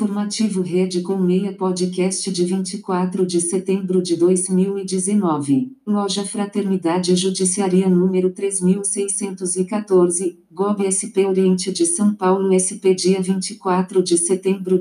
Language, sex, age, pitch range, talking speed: Portuguese, female, 40-59, 180-200 Hz, 110 wpm